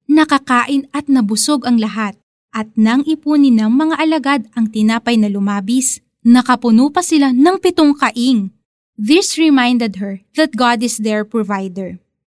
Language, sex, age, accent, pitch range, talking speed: Filipino, female, 20-39, native, 225-290 Hz, 140 wpm